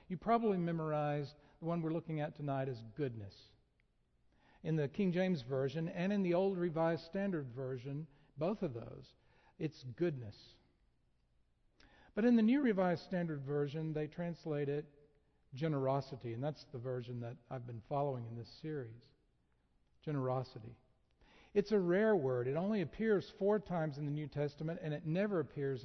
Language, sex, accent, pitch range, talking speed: English, male, American, 130-185 Hz, 160 wpm